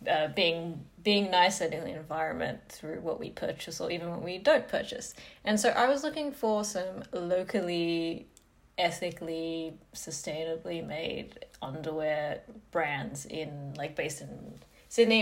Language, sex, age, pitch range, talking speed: English, female, 20-39, 175-240 Hz, 140 wpm